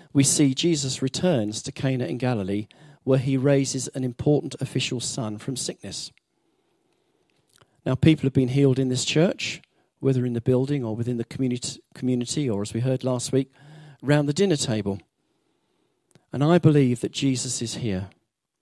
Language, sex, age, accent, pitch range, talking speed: English, male, 40-59, British, 120-145 Hz, 165 wpm